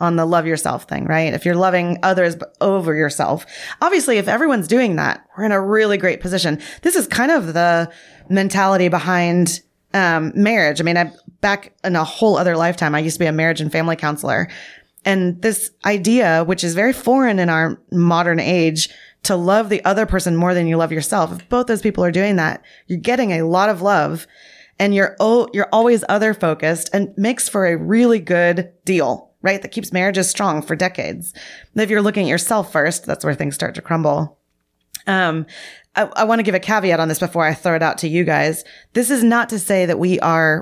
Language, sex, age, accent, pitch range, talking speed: English, female, 20-39, American, 165-205 Hz, 210 wpm